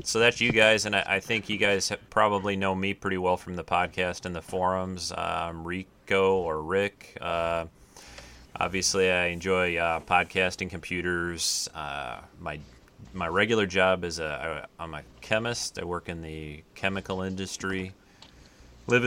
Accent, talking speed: American, 155 wpm